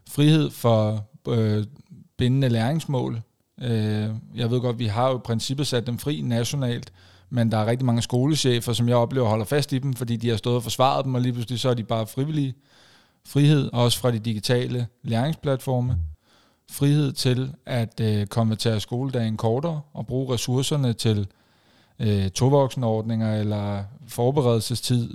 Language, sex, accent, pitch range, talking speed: Danish, male, native, 115-130 Hz, 160 wpm